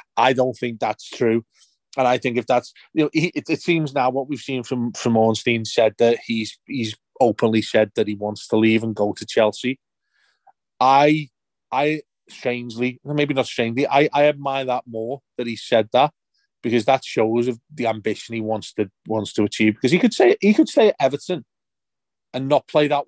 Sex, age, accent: male, 30-49, British